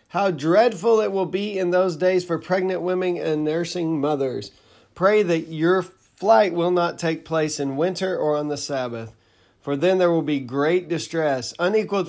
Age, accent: 40-59, American